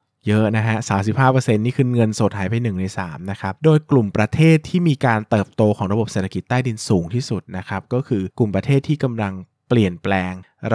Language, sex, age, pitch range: Thai, male, 20-39, 95-125 Hz